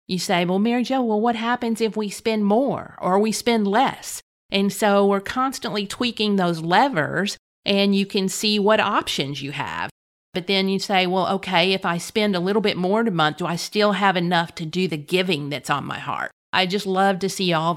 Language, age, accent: English, 40-59, American